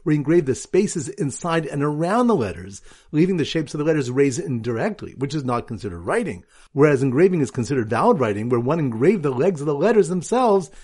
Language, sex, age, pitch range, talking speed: English, male, 50-69, 130-195 Hz, 200 wpm